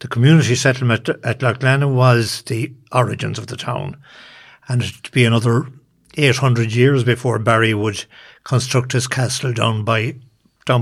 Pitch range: 115-140 Hz